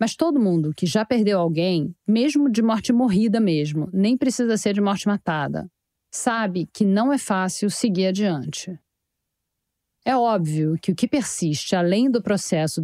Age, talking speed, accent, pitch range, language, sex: 50-69, 160 wpm, Brazilian, 175-230 Hz, Portuguese, female